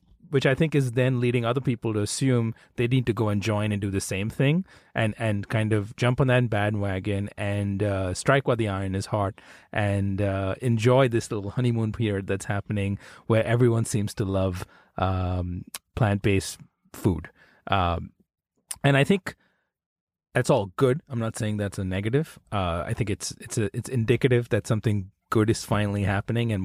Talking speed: 185 wpm